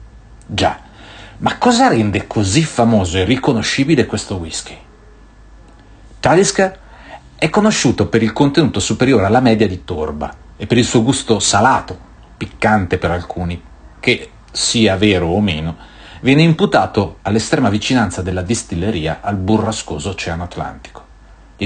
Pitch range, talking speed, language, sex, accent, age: 90-125 Hz, 125 wpm, Italian, male, native, 40-59